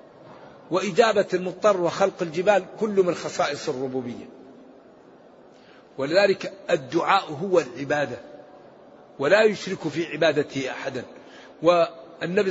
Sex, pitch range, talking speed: male, 170-210 Hz, 85 wpm